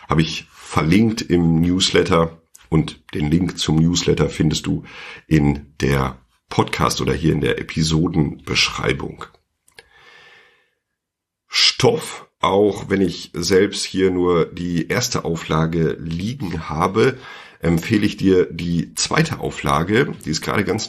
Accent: German